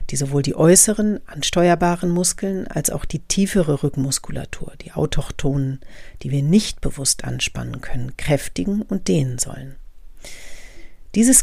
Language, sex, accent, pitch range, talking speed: German, female, German, 140-185 Hz, 125 wpm